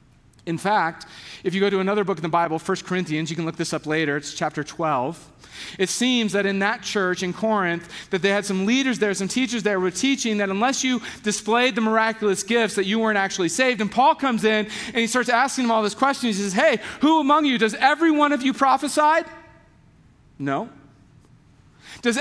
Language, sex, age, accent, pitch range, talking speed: English, male, 40-59, American, 185-255 Hz, 215 wpm